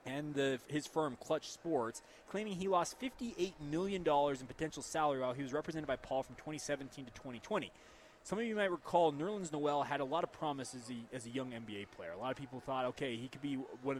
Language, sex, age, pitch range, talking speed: English, male, 20-39, 135-185 Hz, 225 wpm